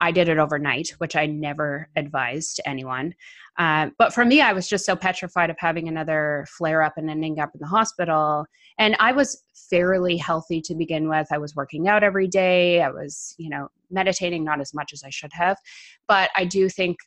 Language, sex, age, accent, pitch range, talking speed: English, female, 20-39, American, 160-195 Hz, 200 wpm